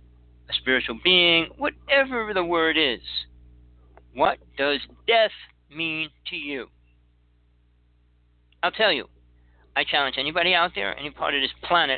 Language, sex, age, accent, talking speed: English, male, 60-79, American, 130 wpm